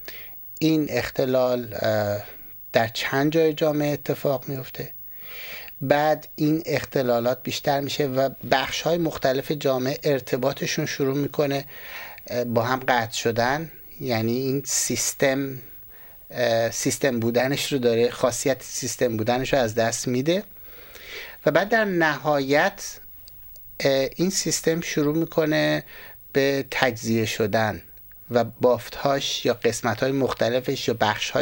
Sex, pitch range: male, 120-150 Hz